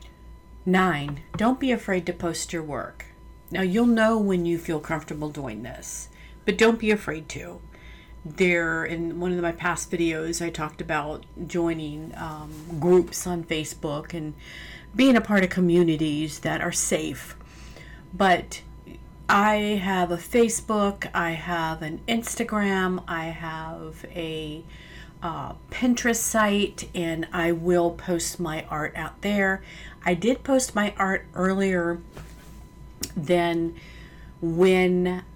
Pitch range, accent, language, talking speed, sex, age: 160-190 Hz, American, English, 130 wpm, female, 40-59